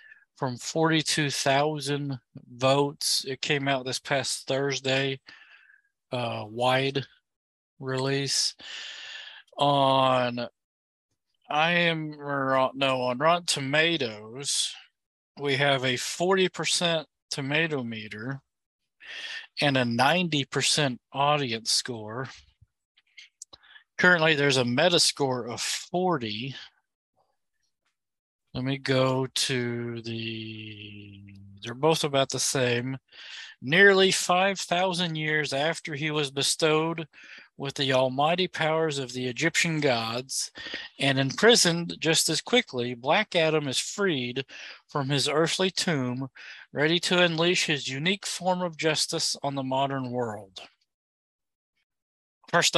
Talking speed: 100 wpm